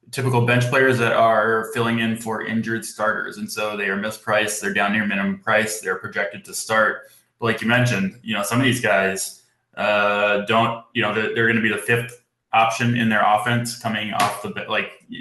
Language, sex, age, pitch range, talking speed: English, male, 20-39, 105-120 Hz, 205 wpm